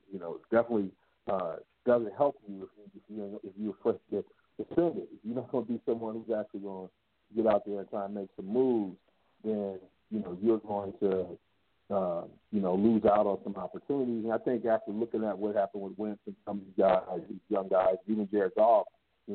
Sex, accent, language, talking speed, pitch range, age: male, American, English, 225 wpm, 95-110 Hz, 50-69